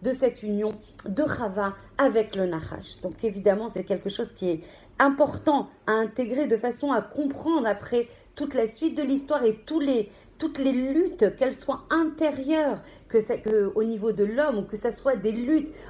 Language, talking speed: French, 190 wpm